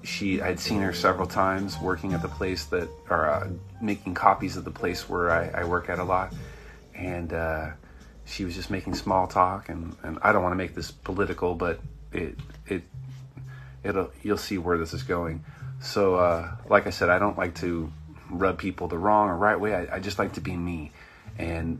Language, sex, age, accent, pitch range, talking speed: English, male, 30-49, American, 85-110 Hz, 210 wpm